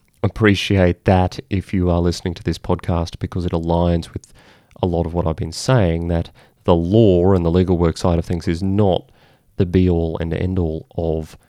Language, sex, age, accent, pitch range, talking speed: English, male, 30-49, Australian, 85-105 Hz, 195 wpm